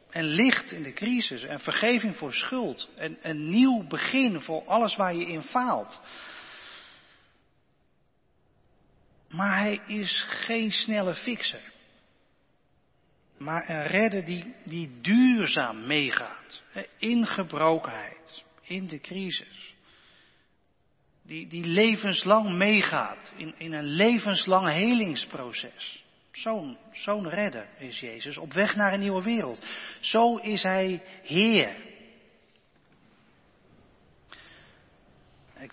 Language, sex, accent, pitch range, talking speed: Dutch, male, Dutch, 145-205 Hz, 105 wpm